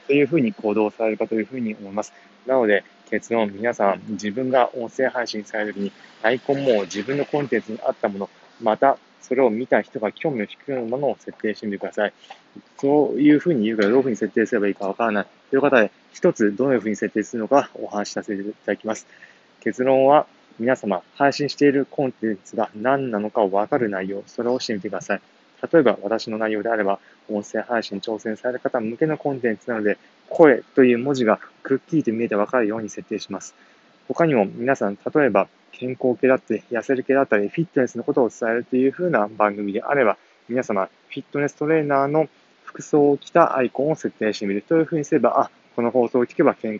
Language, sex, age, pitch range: Japanese, male, 20-39, 105-135 Hz